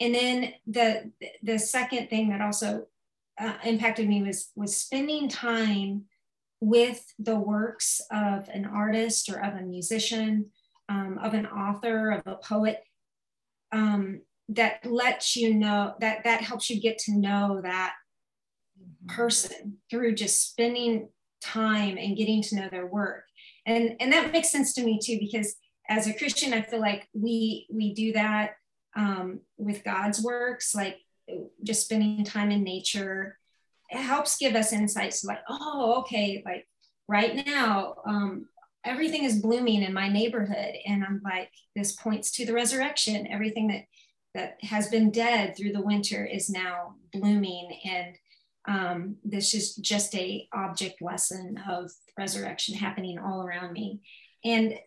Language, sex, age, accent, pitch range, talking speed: English, female, 30-49, American, 200-230 Hz, 150 wpm